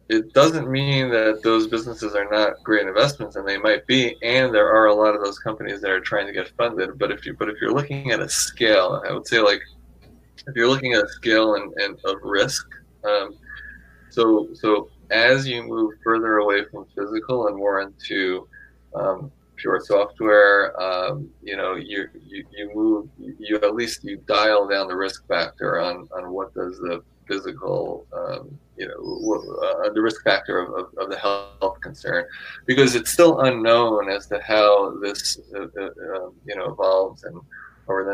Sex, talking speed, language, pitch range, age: male, 185 wpm, English, 95-125 Hz, 20-39